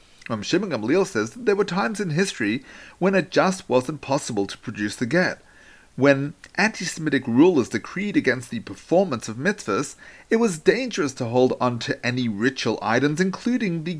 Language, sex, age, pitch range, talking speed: English, male, 40-59, 130-195 Hz, 170 wpm